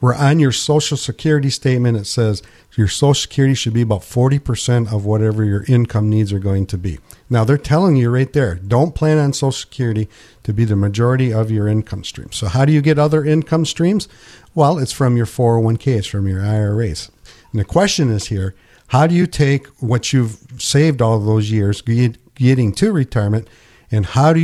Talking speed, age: 200 wpm, 50-69